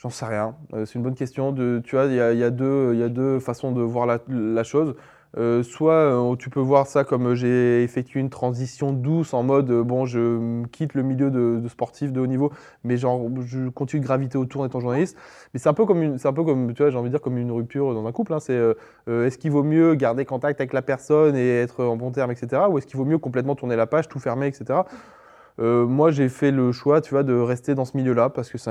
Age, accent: 20-39, French